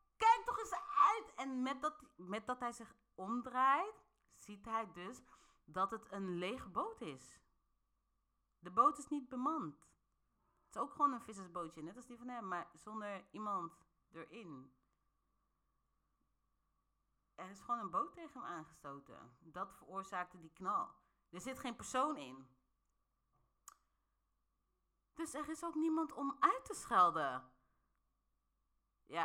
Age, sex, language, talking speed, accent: 40-59, female, Dutch, 140 wpm, Dutch